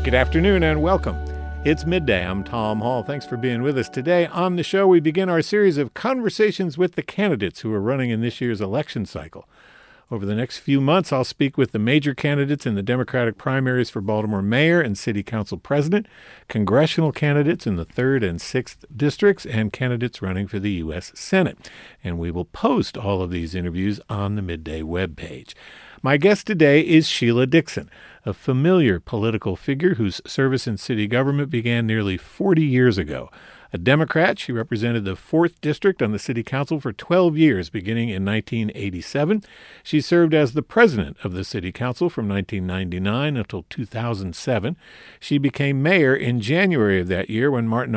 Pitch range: 100-145 Hz